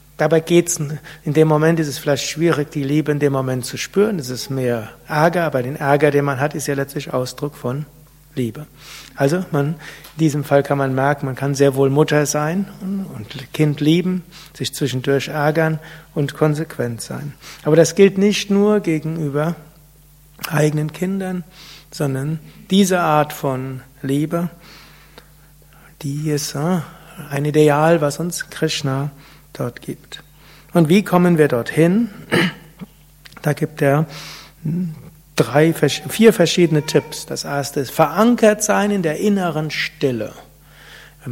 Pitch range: 145-170 Hz